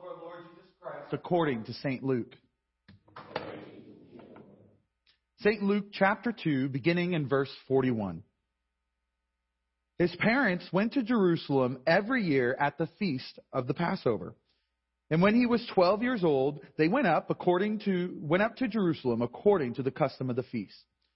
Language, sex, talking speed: English, male, 135 wpm